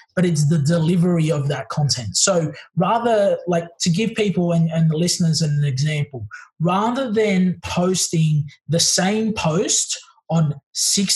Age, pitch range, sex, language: 20-39, 145-180 Hz, male, English